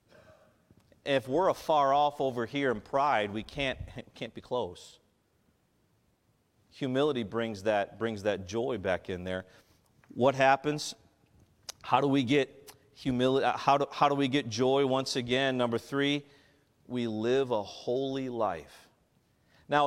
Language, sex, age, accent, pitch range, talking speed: English, male, 40-59, American, 115-155 Hz, 140 wpm